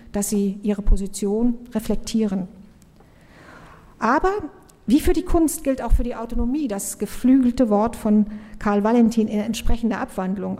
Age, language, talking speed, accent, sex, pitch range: 50-69, German, 135 wpm, German, female, 205-255 Hz